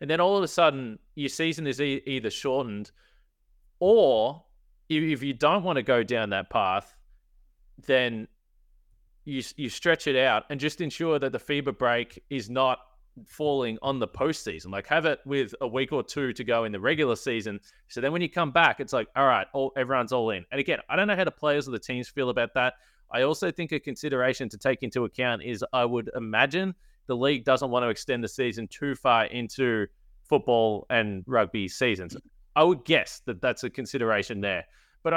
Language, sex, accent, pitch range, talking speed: English, male, Australian, 115-145 Hz, 200 wpm